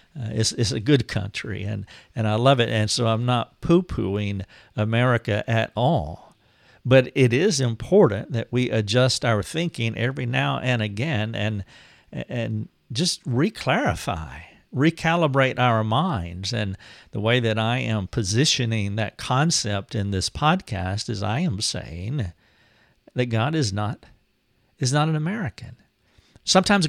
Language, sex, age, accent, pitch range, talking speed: English, male, 50-69, American, 105-135 Hz, 145 wpm